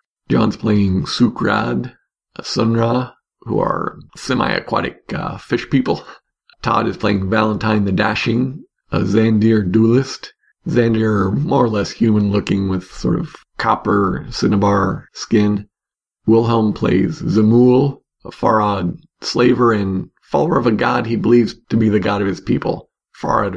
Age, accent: 50-69, American